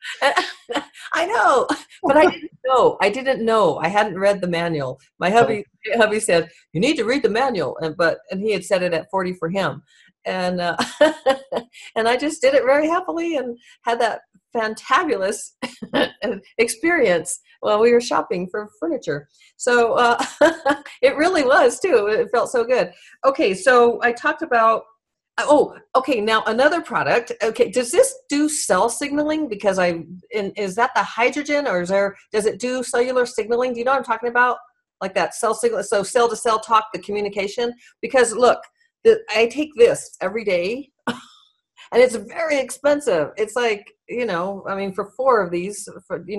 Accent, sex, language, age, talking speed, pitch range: American, female, English, 50-69, 180 wpm, 195-285 Hz